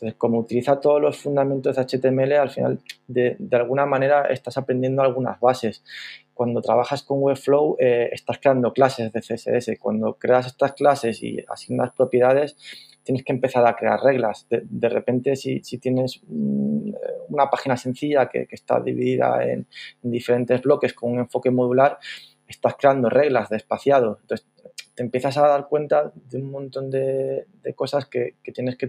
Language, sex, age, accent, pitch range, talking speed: Spanish, male, 20-39, Spanish, 115-135 Hz, 170 wpm